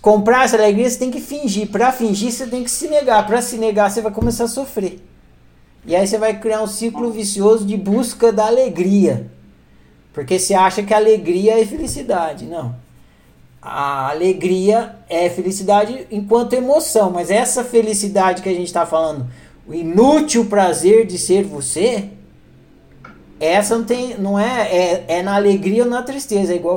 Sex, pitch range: male, 170-230 Hz